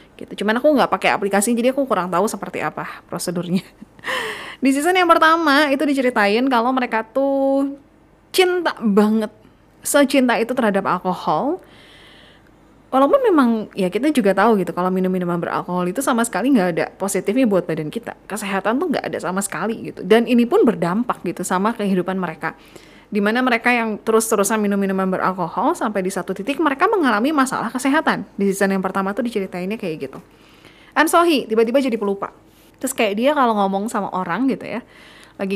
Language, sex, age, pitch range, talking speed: Indonesian, female, 20-39, 195-270 Hz, 165 wpm